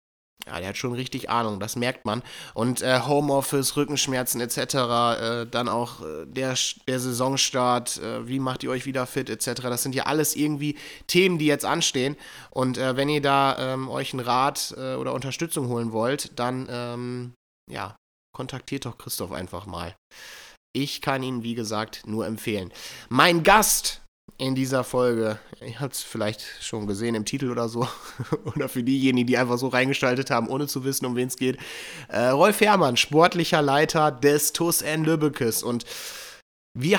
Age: 20-39